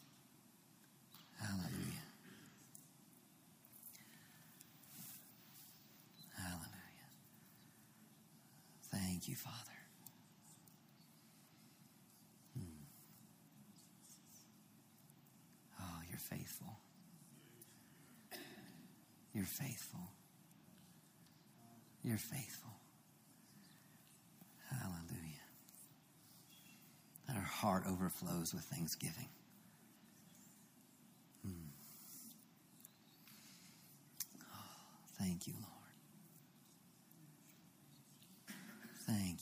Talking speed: 40 wpm